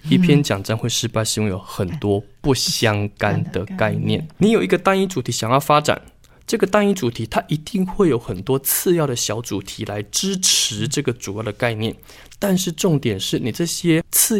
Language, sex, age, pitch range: Chinese, male, 20-39, 105-140 Hz